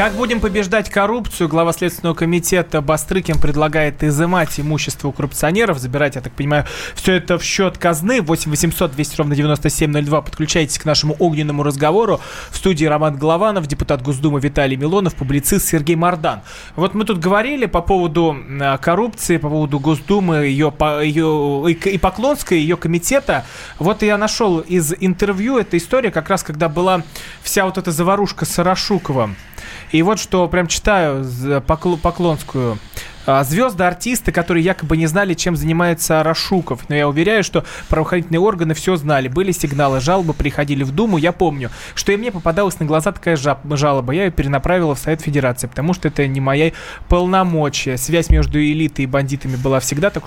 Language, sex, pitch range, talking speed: Russian, male, 145-185 Hz, 160 wpm